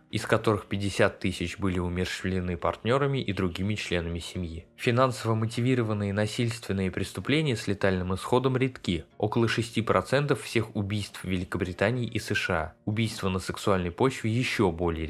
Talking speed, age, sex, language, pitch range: 135 wpm, 20-39, male, Russian, 95-115 Hz